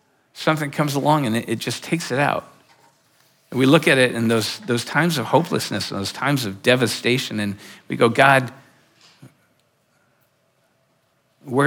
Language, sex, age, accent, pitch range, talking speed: English, male, 50-69, American, 130-175 Hz, 155 wpm